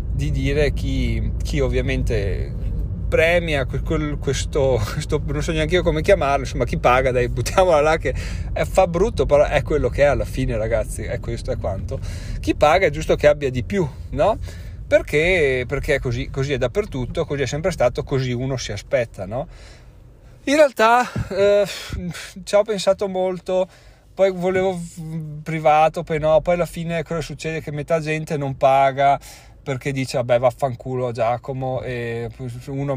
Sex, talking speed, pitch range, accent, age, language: male, 165 wpm, 125-170 Hz, native, 30-49, Italian